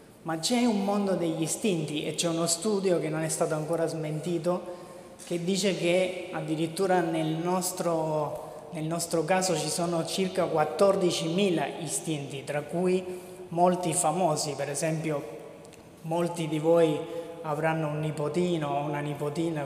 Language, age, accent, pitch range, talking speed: Italian, 20-39, native, 155-180 Hz, 135 wpm